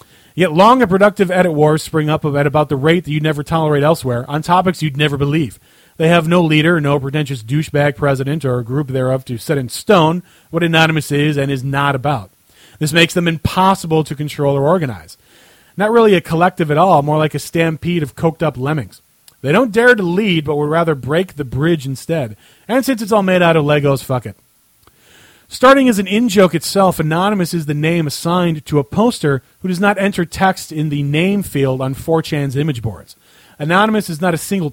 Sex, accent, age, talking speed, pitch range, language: male, American, 30-49, 205 wpm, 145-185 Hz, English